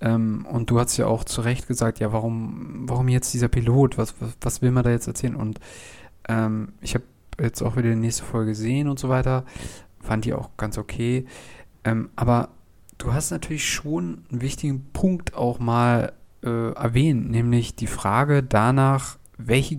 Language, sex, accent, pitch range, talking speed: German, male, German, 115-145 Hz, 180 wpm